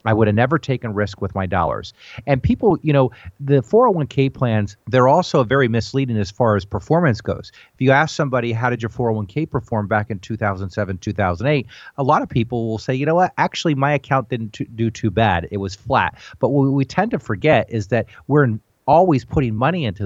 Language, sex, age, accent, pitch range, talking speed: English, male, 40-59, American, 105-135 Hz, 210 wpm